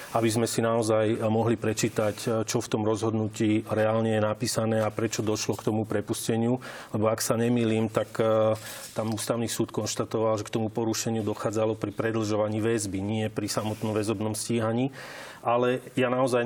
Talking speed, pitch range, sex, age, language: 165 wpm, 110-120 Hz, male, 30-49, Slovak